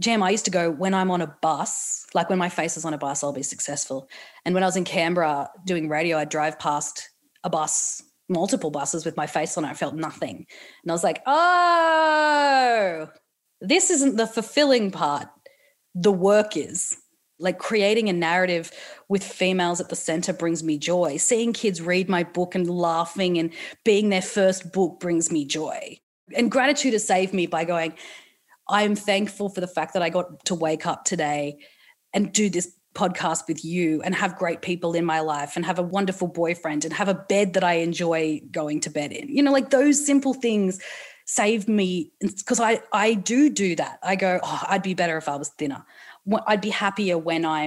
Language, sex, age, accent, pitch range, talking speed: English, female, 30-49, Australian, 165-210 Hz, 205 wpm